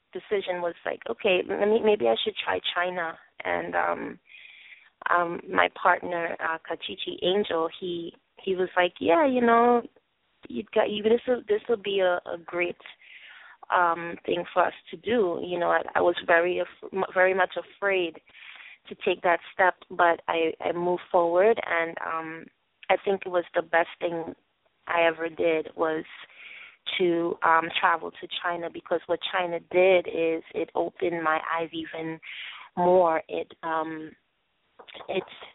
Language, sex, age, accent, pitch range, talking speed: English, female, 20-39, American, 165-185 Hz, 160 wpm